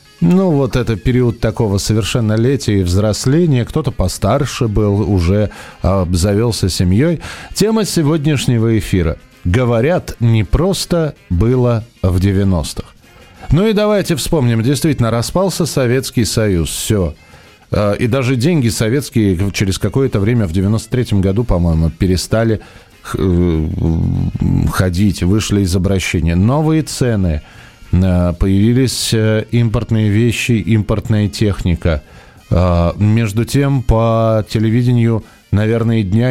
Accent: native